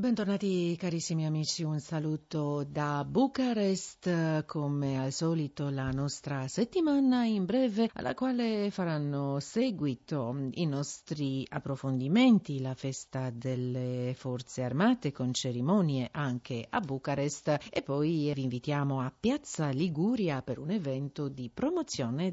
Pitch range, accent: 125-180 Hz, native